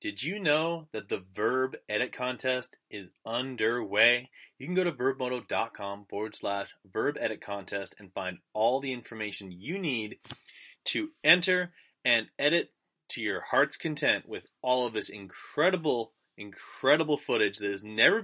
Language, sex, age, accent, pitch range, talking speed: English, male, 20-39, American, 110-160 Hz, 150 wpm